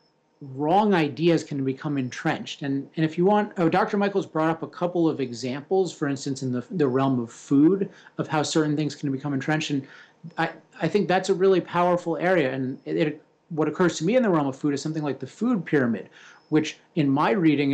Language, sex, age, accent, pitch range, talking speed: English, male, 30-49, American, 140-170 Hz, 220 wpm